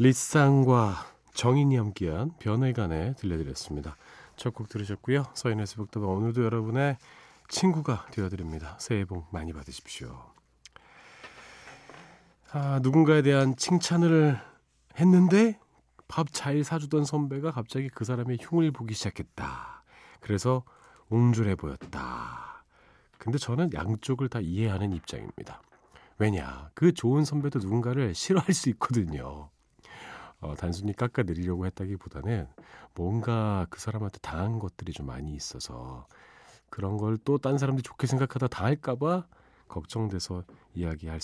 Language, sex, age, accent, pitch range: Korean, male, 40-59, native, 90-135 Hz